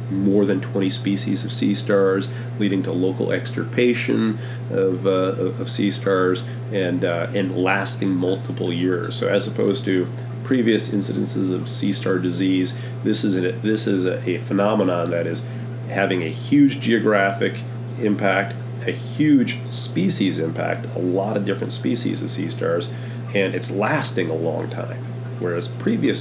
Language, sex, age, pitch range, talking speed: English, male, 30-49, 100-120 Hz, 155 wpm